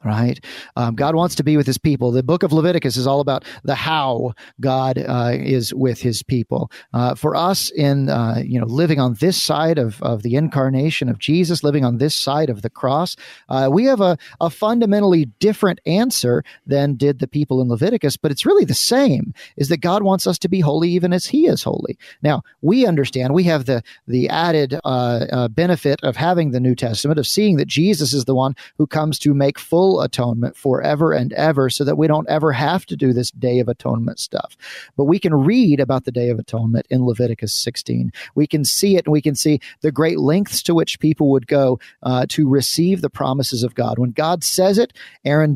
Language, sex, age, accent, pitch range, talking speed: English, male, 40-59, American, 125-160 Hz, 215 wpm